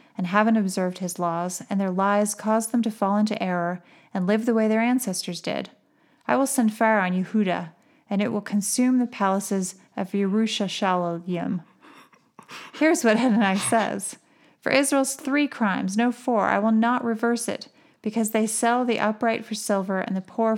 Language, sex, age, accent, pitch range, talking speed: English, female, 30-49, American, 190-225 Hz, 180 wpm